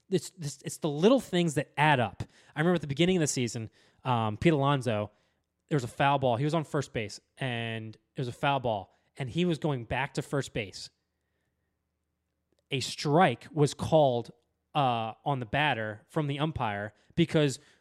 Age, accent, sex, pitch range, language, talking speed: 20-39, American, male, 120-180 Hz, English, 185 wpm